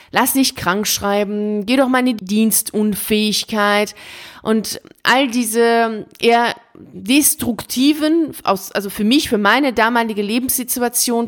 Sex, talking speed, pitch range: female, 115 wpm, 190-240 Hz